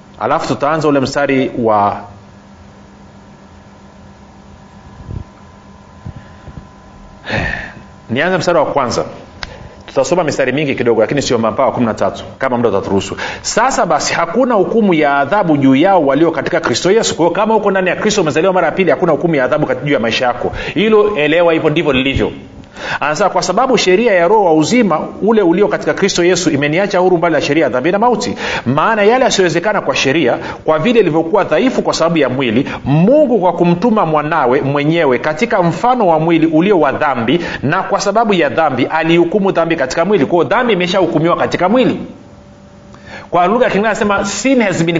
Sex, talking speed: male, 165 wpm